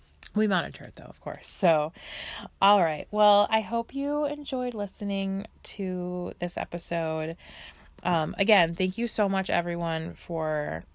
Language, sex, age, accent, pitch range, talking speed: English, female, 20-39, American, 155-195 Hz, 145 wpm